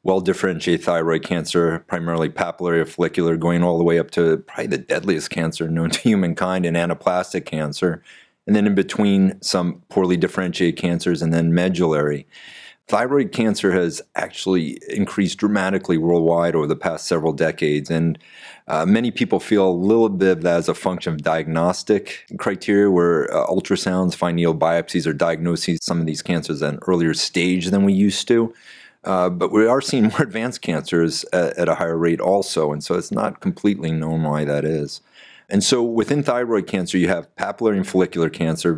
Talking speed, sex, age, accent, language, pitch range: 180 wpm, male, 30-49, American, English, 80-95 Hz